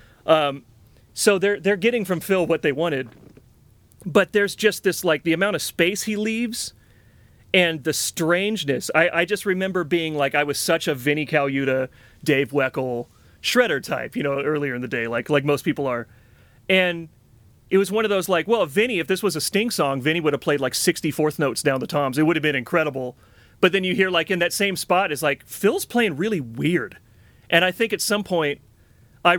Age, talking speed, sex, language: 30-49, 210 wpm, male, English